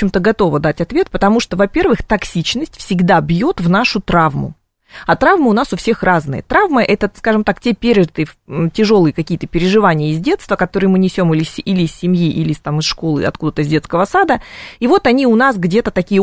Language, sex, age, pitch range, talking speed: Russian, female, 20-39, 165-215 Hz, 200 wpm